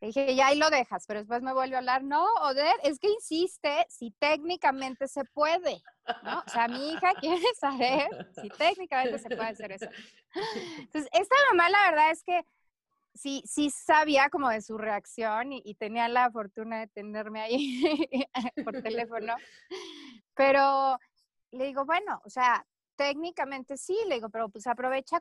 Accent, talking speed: Mexican, 170 wpm